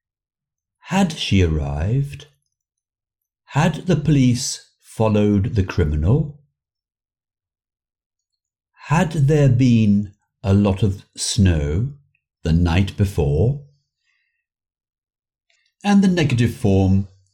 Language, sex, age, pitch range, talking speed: English, male, 60-79, 85-140 Hz, 80 wpm